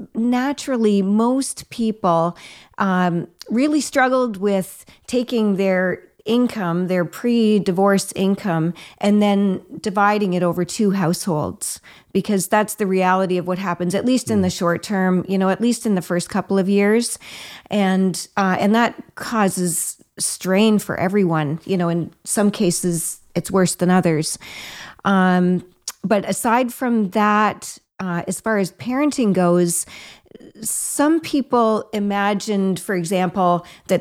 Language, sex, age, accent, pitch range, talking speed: English, female, 40-59, American, 180-210 Hz, 135 wpm